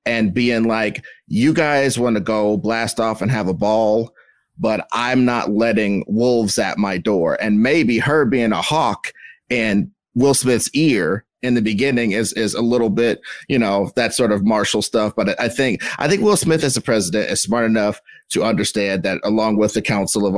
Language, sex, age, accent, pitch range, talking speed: English, male, 30-49, American, 105-130 Hz, 200 wpm